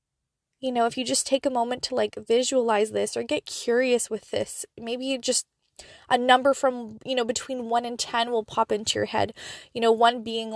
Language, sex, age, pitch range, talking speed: English, female, 20-39, 215-265 Hz, 215 wpm